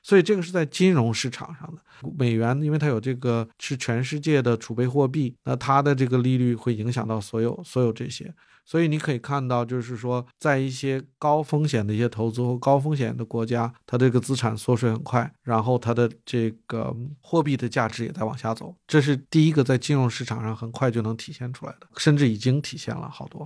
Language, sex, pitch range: Chinese, male, 120-150 Hz